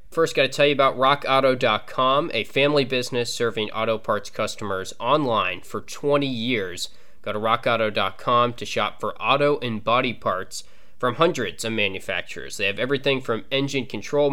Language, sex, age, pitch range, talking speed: English, male, 20-39, 110-135 Hz, 160 wpm